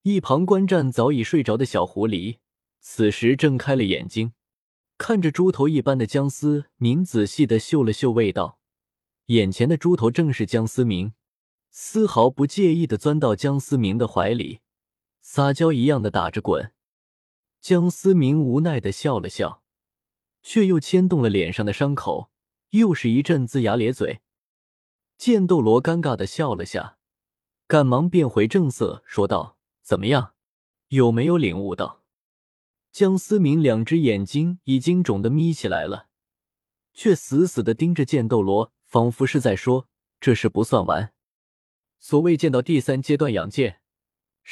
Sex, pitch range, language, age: male, 110-160 Hz, Chinese, 20-39